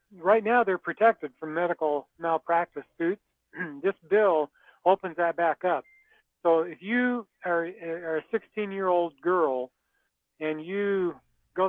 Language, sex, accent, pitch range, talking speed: English, male, American, 150-180 Hz, 125 wpm